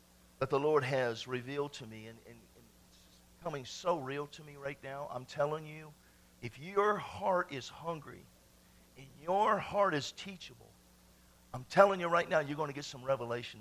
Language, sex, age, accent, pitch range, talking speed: English, male, 50-69, American, 125-170 Hz, 185 wpm